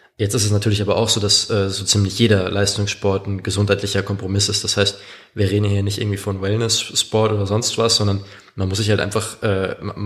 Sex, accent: male, German